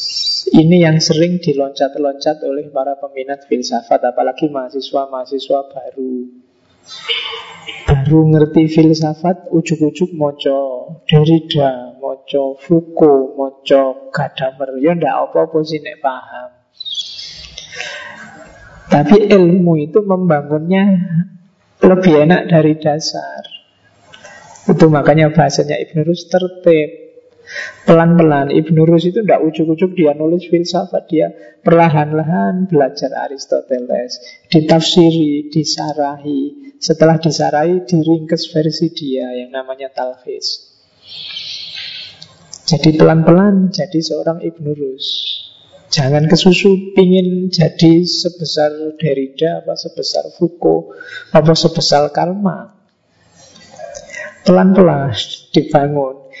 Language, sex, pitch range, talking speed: Indonesian, male, 140-175 Hz, 85 wpm